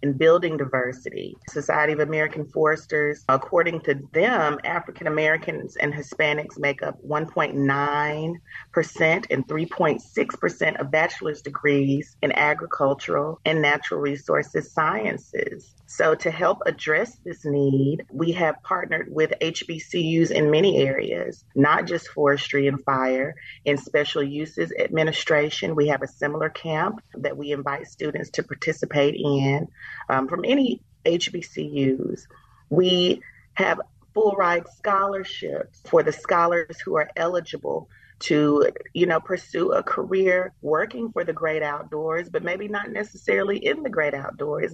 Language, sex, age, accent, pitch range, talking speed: English, female, 40-59, American, 145-175 Hz, 130 wpm